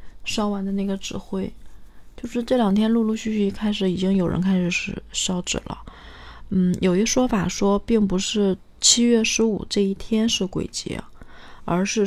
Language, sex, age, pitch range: Chinese, female, 20-39, 180-215 Hz